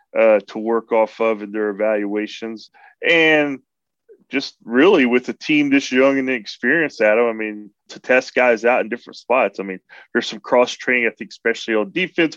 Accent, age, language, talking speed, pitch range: American, 30-49, English, 190 wpm, 110-135 Hz